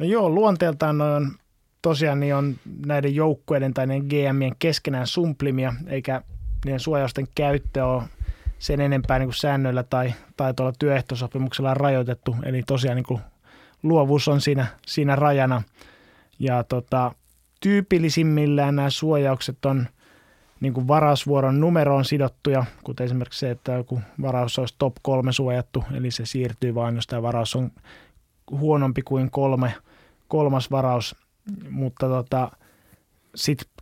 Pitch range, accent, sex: 125-145 Hz, native, male